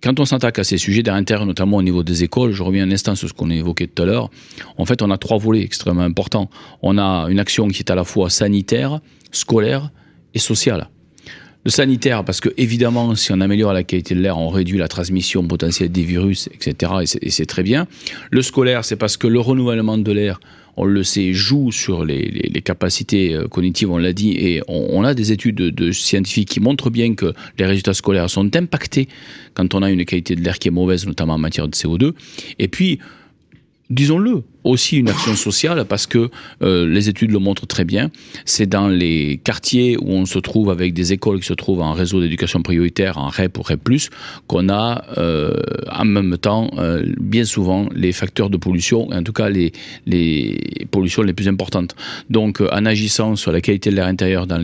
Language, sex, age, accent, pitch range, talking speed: French, male, 40-59, French, 90-115 Hz, 215 wpm